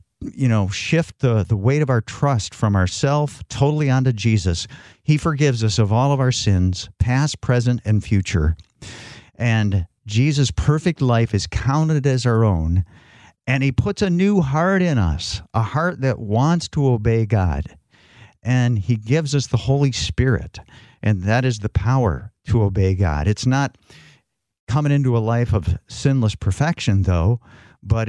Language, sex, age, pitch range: English, male, 50-69, 100-125 Hz